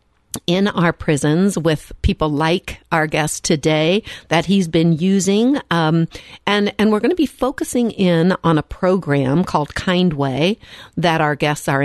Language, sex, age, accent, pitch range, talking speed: English, female, 60-79, American, 160-225 Hz, 155 wpm